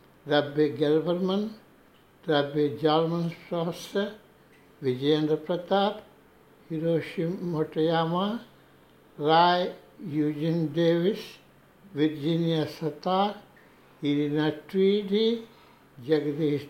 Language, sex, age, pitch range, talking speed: Telugu, male, 60-79, 150-195 Hz, 55 wpm